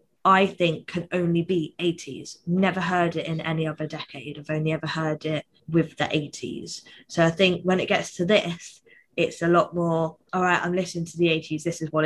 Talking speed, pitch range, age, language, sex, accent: 215 wpm, 160-185 Hz, 20-39, English, female, British